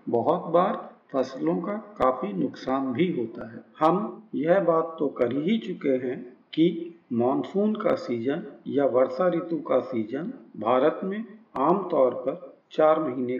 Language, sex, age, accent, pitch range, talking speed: Hindi, male, 50-69, native, 125-190 Hz, 150 wpm